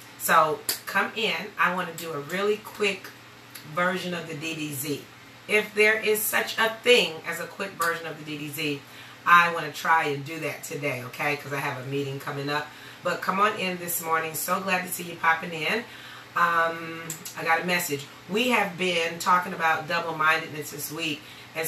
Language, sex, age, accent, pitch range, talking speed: English, female, 30-49, American, 150-180 Hz, 195 wpm